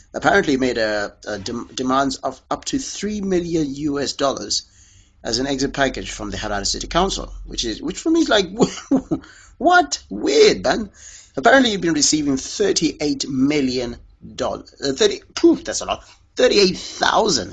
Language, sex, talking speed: English, male, 160 wpm